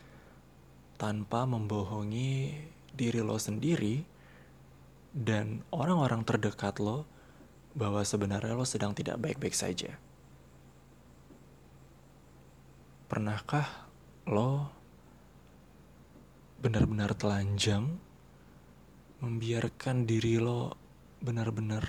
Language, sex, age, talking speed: Indonesian, male, 20-39, 65 wpm